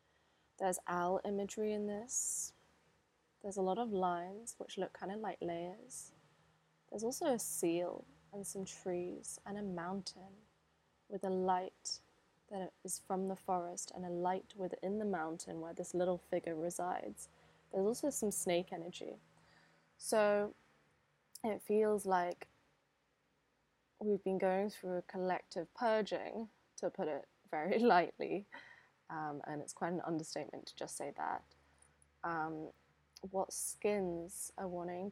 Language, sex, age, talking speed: English, female, 20-39, 140 wpm